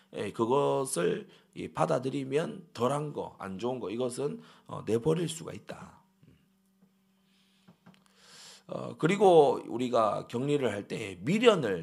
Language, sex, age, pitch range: Korean, male, 40-59, 125-195 Hz